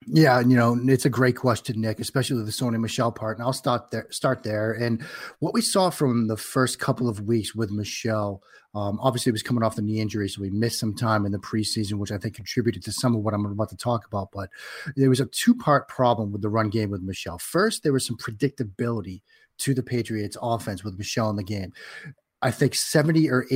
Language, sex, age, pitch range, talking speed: English, male, 30-49, 110-130 Hz, 230 wpm